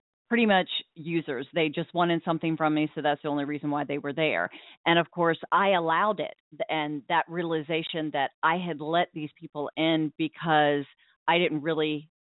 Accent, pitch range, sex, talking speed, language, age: American, 155-185 Hz, female, 185 wpm, English, 40-59